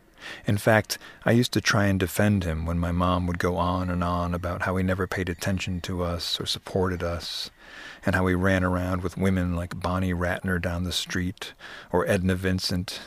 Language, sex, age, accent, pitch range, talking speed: English, male, 50-69, American, 90-100 Hz, 200 wpm